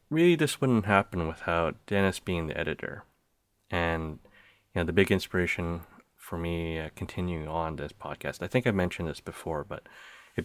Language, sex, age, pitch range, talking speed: English, male, 30-49, 80-100 Hz, 170 wpm